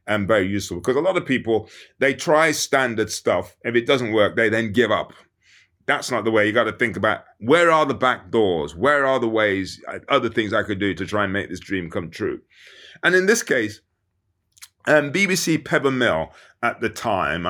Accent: British